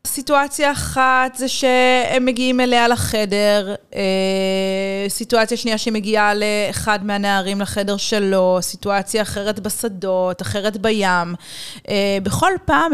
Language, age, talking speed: Hebrew, 30-49, 105 wpm